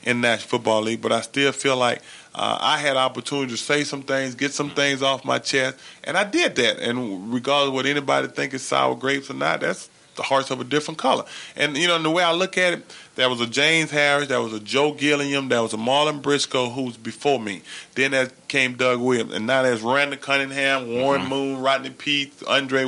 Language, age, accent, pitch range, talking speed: English, 30-49, American, 125-145 Hz, 235 wpm